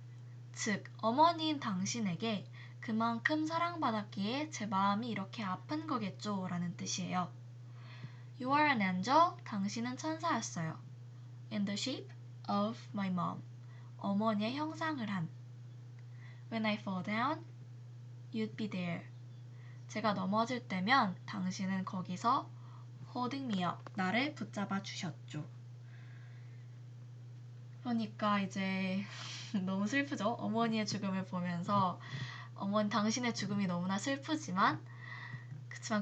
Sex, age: female, 20-39